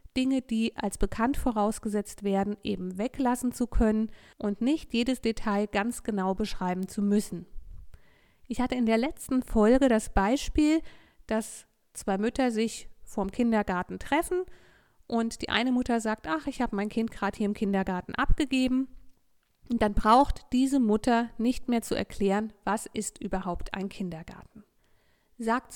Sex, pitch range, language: female, 205-260 Hz, German